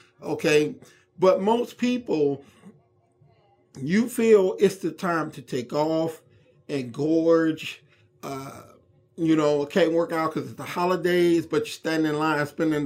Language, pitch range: English, 145-180 Hz